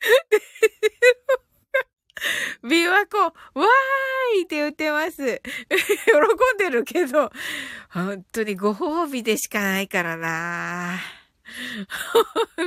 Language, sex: Japanese, female